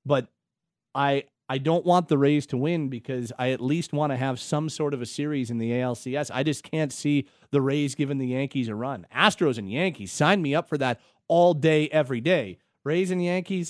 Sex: male